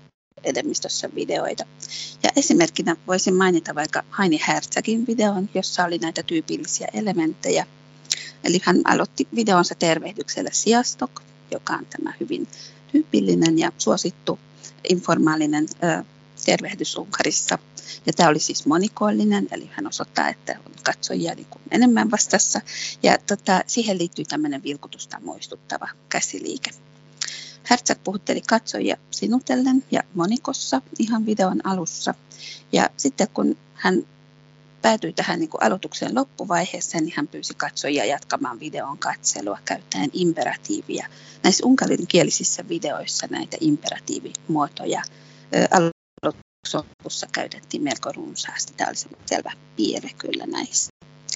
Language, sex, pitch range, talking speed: Finnish, female, 170-260 Hz, 110 wpm